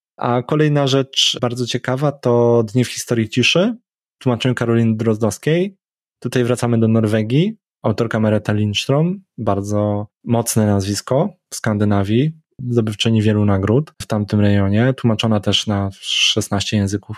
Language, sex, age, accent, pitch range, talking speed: Polish, male, 20-39, native, 105-125 Hz, 125 wpm